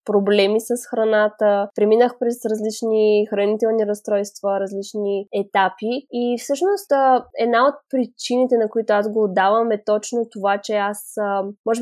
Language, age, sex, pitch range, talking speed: Bulgarian, 20-39, female, 205-245 Hz, 130 wpm